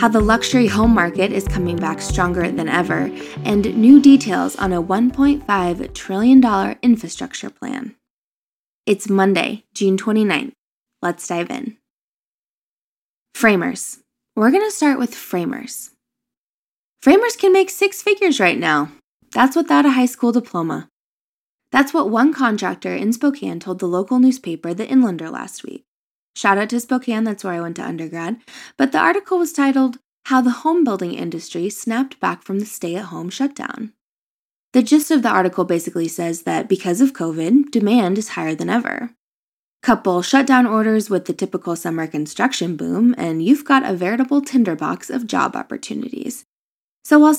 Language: English